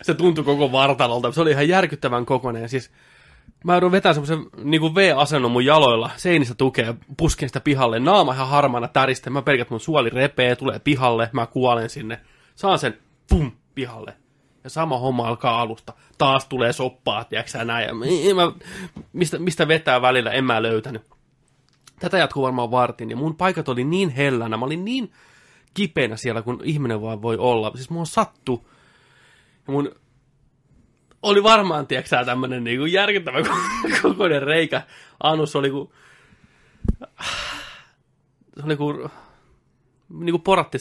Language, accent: Finnish, native